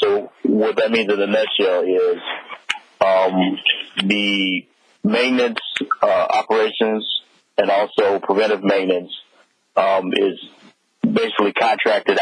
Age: 40-59